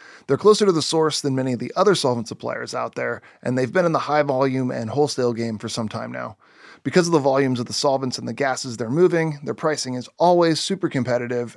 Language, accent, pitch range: English, American, 125-155 Hz